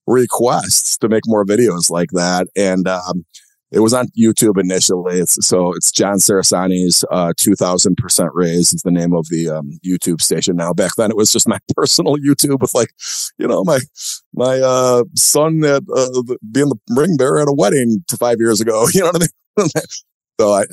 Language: English